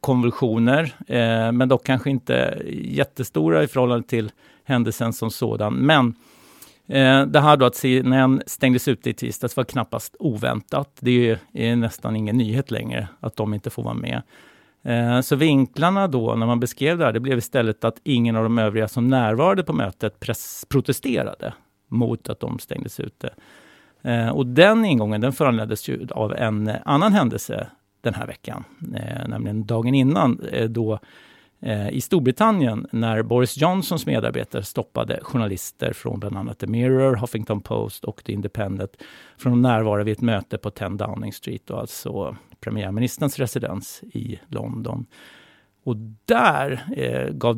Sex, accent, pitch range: male, Swedish, 110-130 Hz